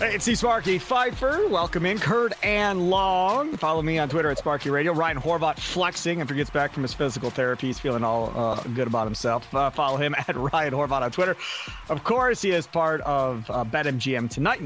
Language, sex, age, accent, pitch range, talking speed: English, male, 40-59, American, 120-170 Hz, 215 wpm